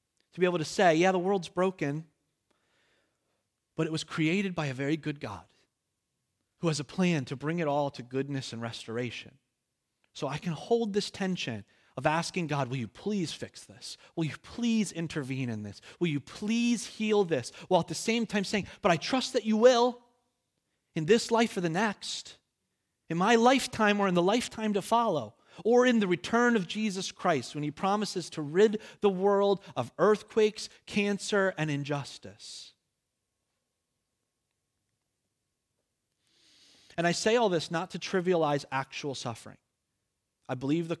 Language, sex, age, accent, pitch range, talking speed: English, male, 30-49, American, 135-195 Hz, 165 wpm